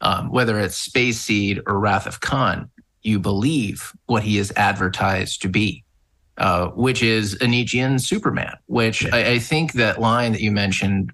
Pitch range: 100-125 Hz